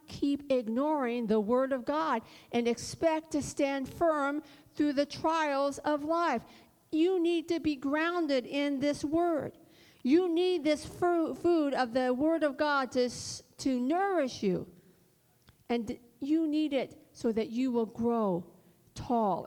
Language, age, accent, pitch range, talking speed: English, 50-69, American, 185-250 Hz, 145 wpm